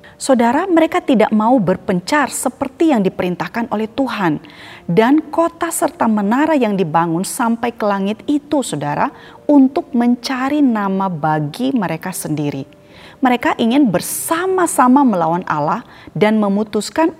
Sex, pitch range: female, 160-260 Hz